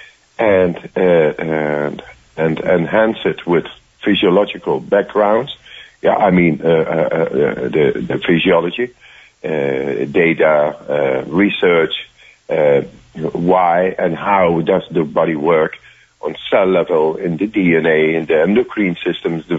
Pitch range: 85-140 Hz